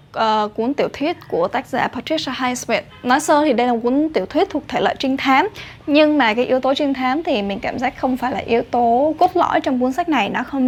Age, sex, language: 10-29, female, Vietnamese